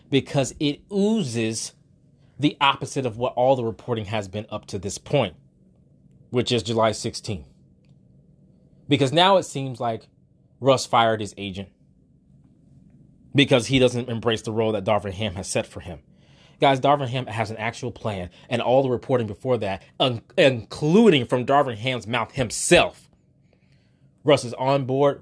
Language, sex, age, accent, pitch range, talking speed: English, male, 20-39, American, 115-140 Hz, 155 wpm